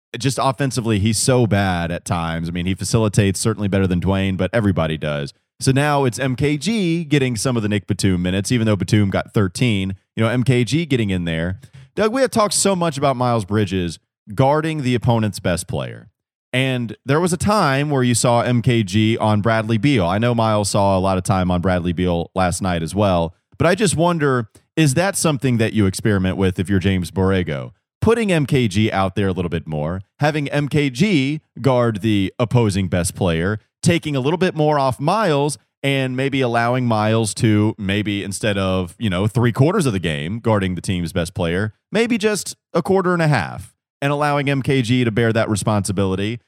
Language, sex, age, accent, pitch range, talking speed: English, male, 30-49, American, 95-140 Hz, 195 wpm